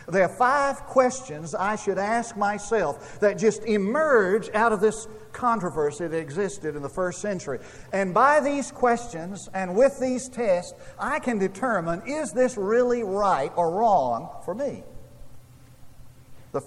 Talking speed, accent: 150 wpm, American